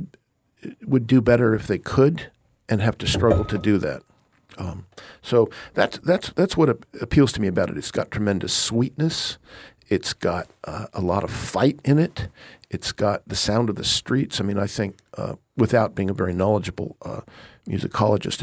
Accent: American